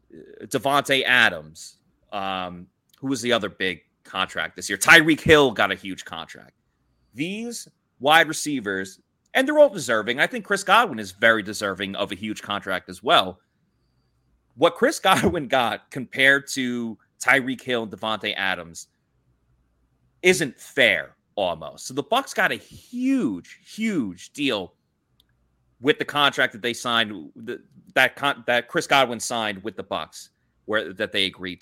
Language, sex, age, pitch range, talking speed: English, male, 30-49, 100-145 Hz, 145 wpm